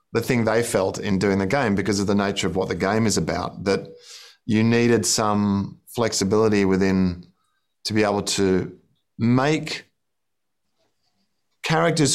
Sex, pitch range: male, 100-120 Hz